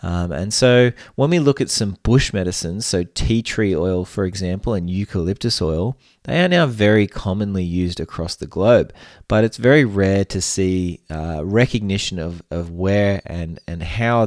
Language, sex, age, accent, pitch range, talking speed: English, male, 20-39, Australian, 90-110 Hz, 175 wpm